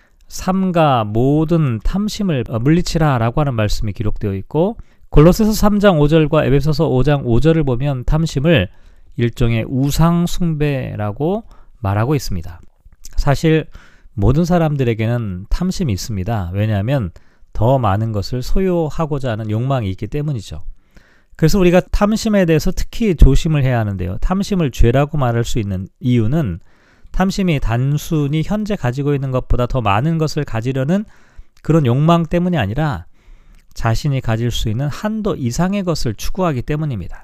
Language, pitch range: Korean, 110-165 Hz